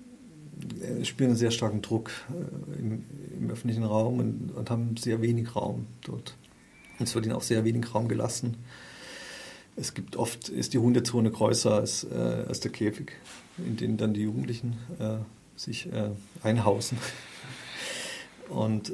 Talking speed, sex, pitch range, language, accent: 145 wpm, male, 110-130 Hz, German, German